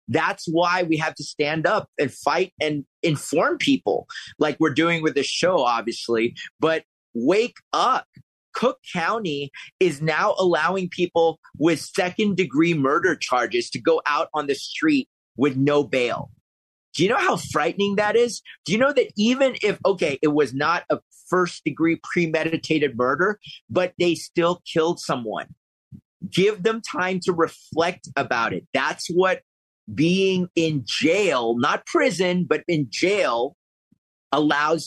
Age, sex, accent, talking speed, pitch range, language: 30-49, male, American, 150 wpm, 150-210 Hz, English